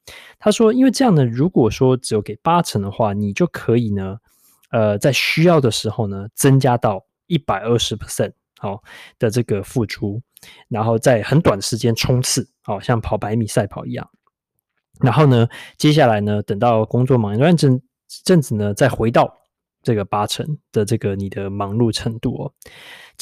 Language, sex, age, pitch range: Chinese, male, 20-39, 110-150 Hz